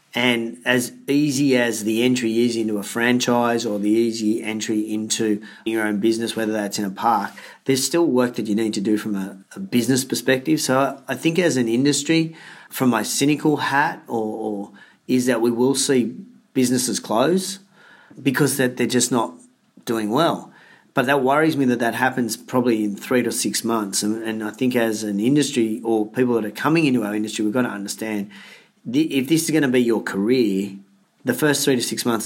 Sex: male